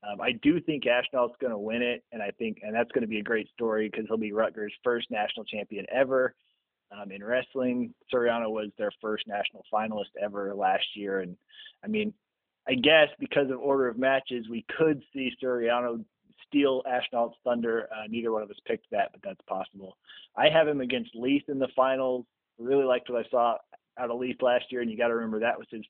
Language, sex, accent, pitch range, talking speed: English, male, American, 115-140 Hz, 220 wpm